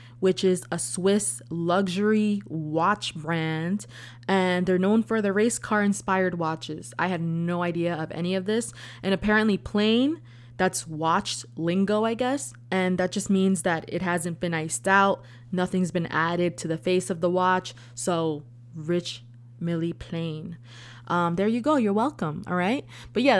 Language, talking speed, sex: English, 165 wpm, female